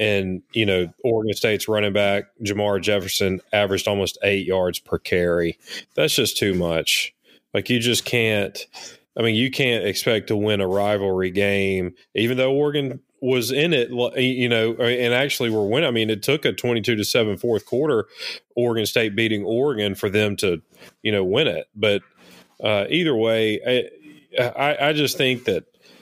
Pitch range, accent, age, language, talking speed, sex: 100-125 Hz, American, 30-49, English, 175 wpm, male